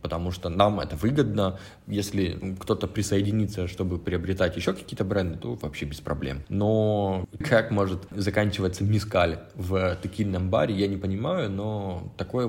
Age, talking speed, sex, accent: 20-39, 145 wpm, male, native